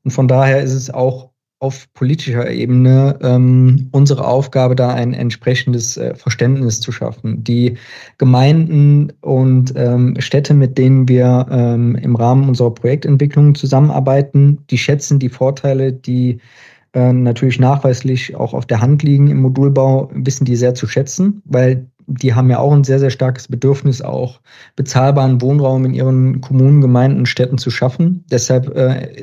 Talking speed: 150 wpm